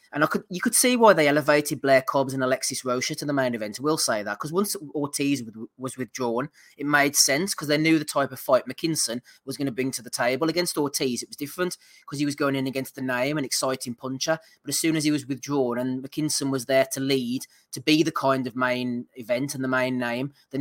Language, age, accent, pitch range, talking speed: English, 20-39, British, 130-155 Hz, 250 wpm